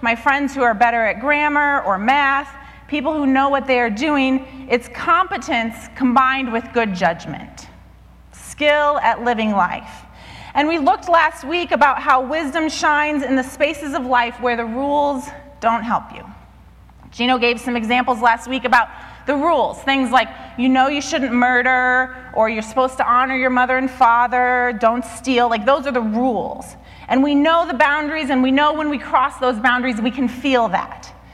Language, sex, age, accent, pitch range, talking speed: English, female, 30-49, American, 235-290 Hz, 180 wpm